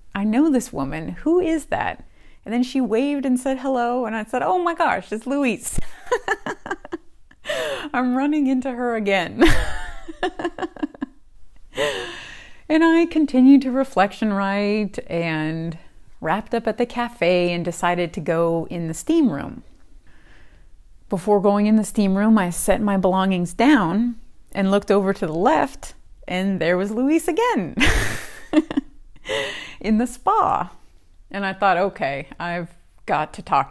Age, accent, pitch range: 30-49, American, 180-260 Hz